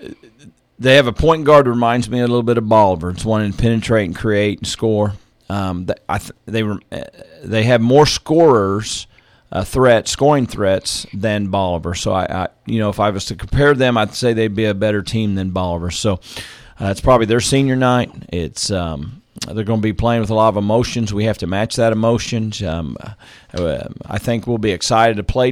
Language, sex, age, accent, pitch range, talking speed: English, male, 40-59, American, 100-115 Hz, 210 wpm